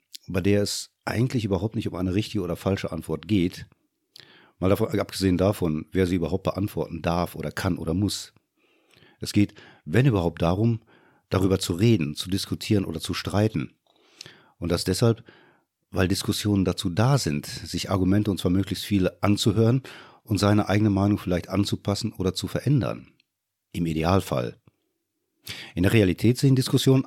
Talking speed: 155 wpm